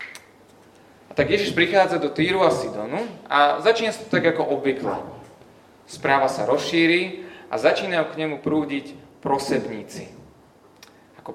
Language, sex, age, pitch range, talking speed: Slovak, male, 30-49, 130-160 Hz, 125 wpm